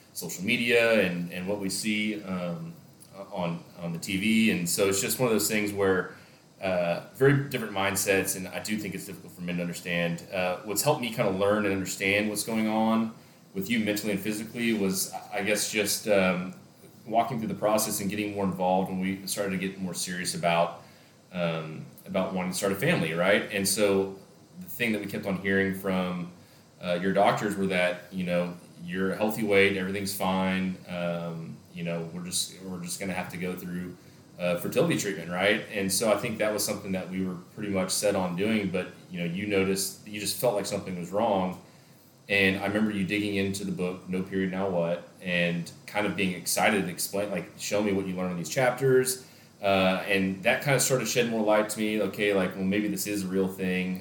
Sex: male